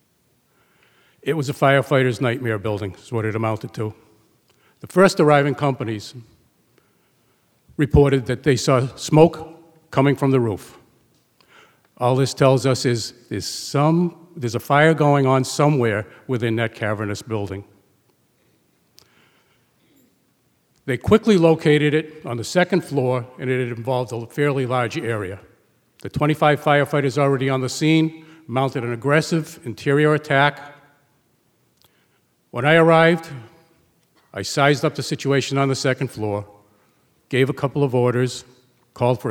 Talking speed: 130 wpm